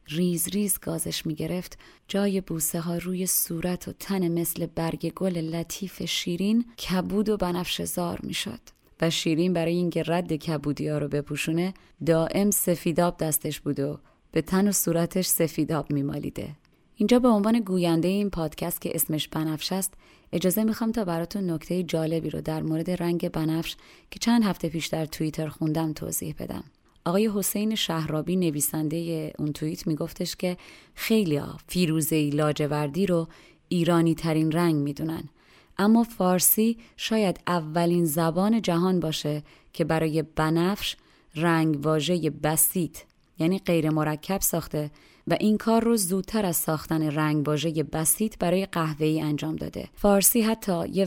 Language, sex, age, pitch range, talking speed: Persian, female, 30-49, 155-185 Hz, 145 wpm